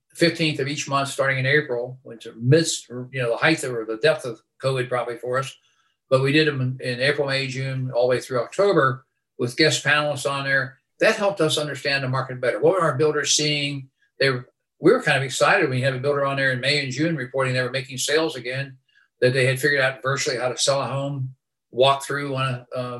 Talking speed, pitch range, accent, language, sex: 235 wpm, 130-150 Hz, American, English, male